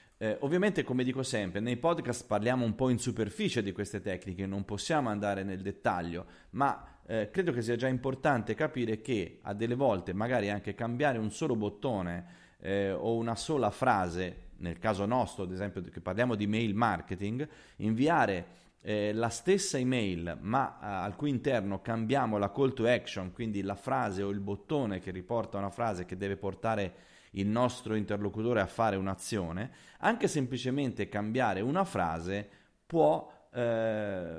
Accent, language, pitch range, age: native, Italian, 100-125 Hz, 30-49